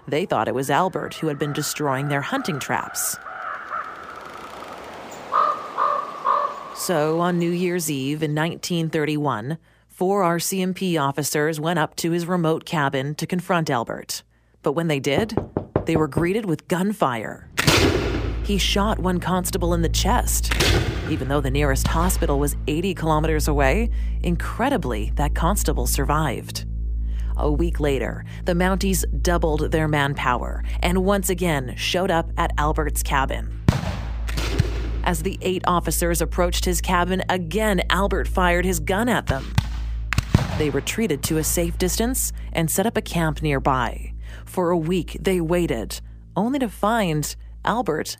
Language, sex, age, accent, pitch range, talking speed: English, female, 30-49, American, 140-185 Hz, 140 wpm